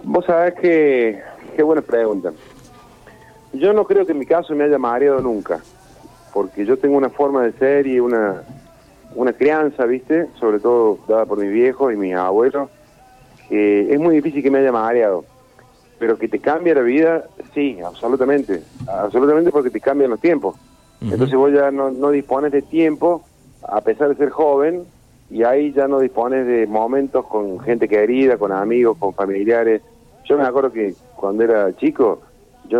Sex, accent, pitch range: male, Argentinian, 110-150 Hz